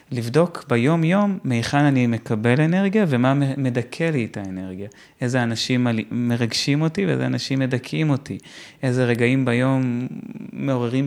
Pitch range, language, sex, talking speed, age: 120-145 Hz, Hebrew, male, 125 wpm, 30-49